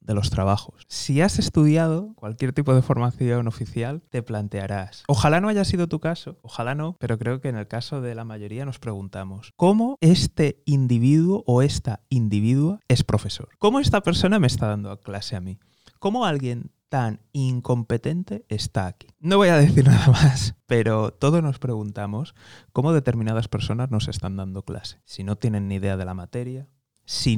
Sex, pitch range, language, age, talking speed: male, 105-140 Hz, Spanish, 20-39, 180 wpm